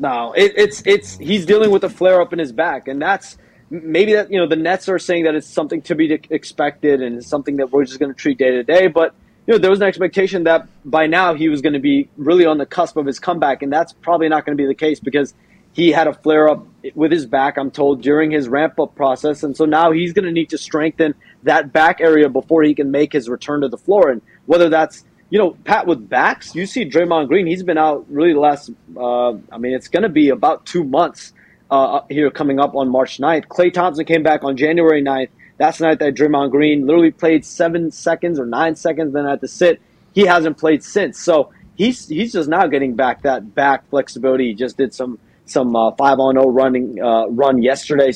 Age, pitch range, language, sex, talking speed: 20-39, 140-170 Hz, English, male, 240 wpm